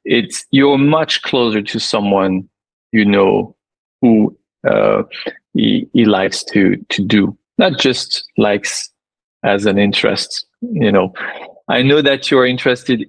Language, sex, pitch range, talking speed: English, male, 100-125 Hz, 140 wpm